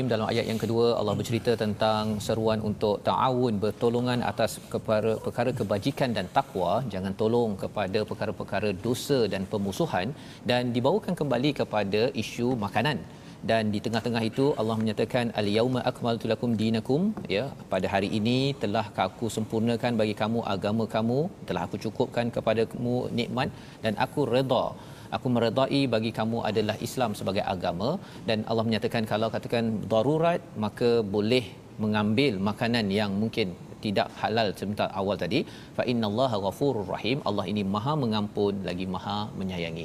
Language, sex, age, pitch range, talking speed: Malayalam, male, 40-59, 110-125 Hz, 145 wpm